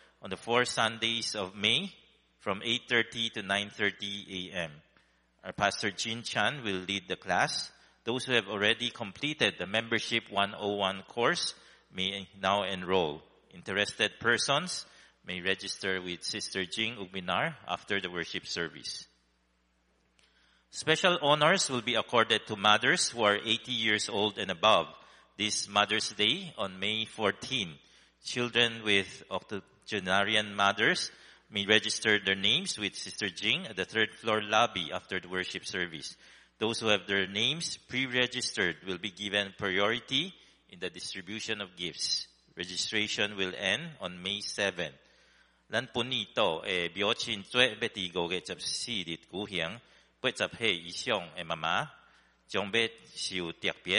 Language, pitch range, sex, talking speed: English, 95-115 Hz, male, 115 wpm